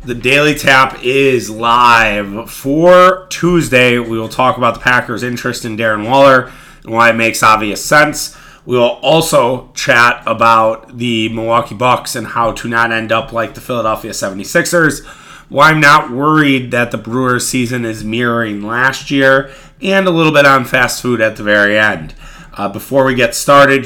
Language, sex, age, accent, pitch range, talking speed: English, male, 30-49, American, 115-145 Hz, 175 wpm